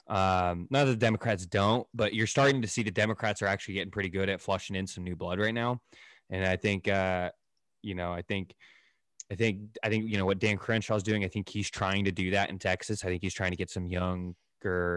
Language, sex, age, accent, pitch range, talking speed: English, male, 20-39, American, 95-110 Hz, 250 wpm